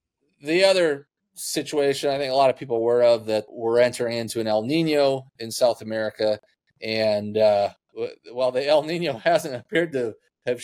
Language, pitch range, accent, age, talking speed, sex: English, 105-140 Hz, American, 30-49, 175 wpm, male